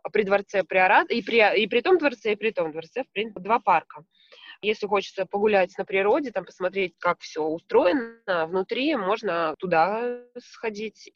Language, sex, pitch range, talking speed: Russian, female, 175-225 Hz, 155 wpm